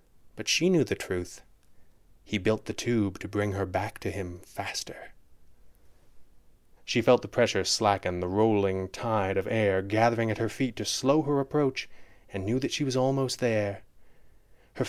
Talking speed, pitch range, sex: 170 wpm, 100-125 Hz, male